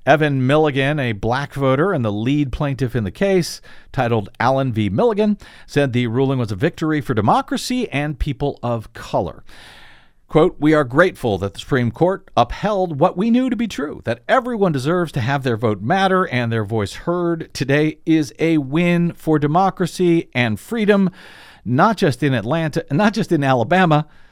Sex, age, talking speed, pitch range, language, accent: male, 50-69, 175 wpm, 120-165 Hz, English, American